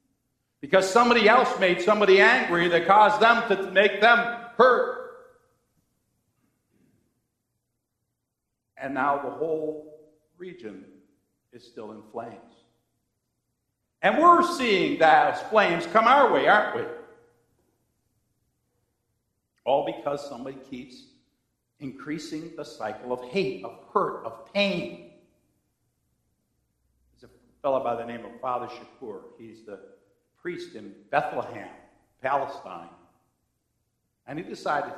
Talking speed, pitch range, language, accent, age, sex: 105 wpm, 125-195 Hz, English, American, 60-79, male